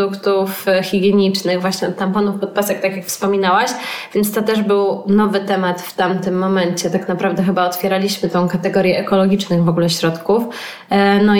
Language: Polish